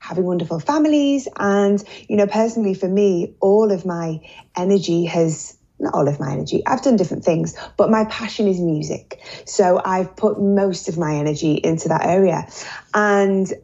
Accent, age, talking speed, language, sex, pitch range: British, 20-39, 170 wpm, German, female, 175-210 Hz